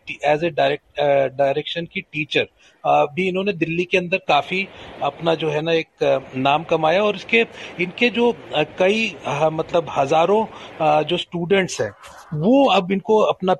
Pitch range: 155-190 Hz